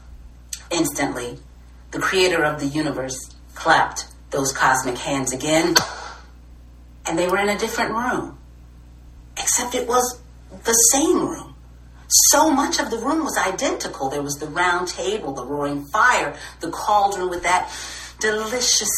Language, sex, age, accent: English, female, 40-59, American